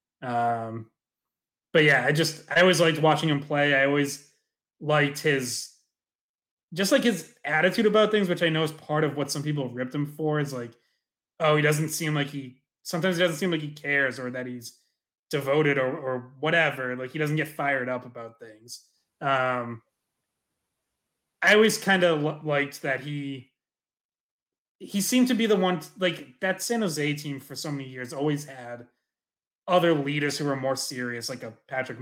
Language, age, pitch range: English, 20-39, 125-155 Hz